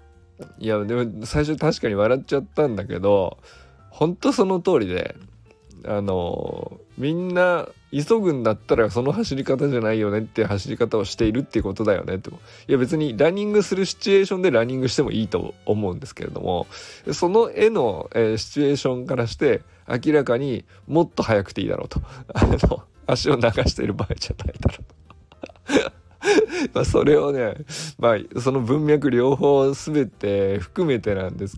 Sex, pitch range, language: male, 105-150 Hz, Japanese